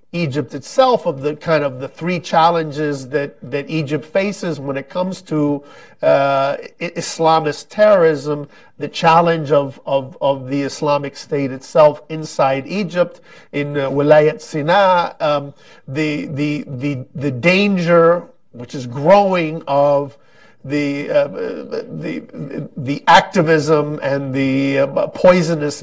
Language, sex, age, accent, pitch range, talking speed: English, male, 50-69, American, 140-175 Hz, 125 wpm